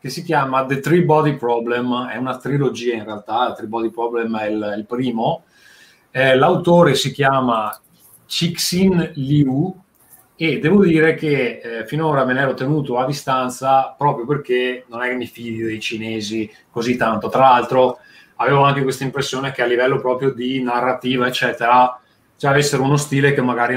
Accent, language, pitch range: native, Italian, 120-145 Hz